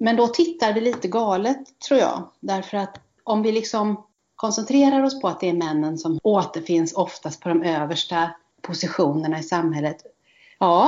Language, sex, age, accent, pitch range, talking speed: Swedish, female, 40-59, native, 165-210 Hz, 165 wpm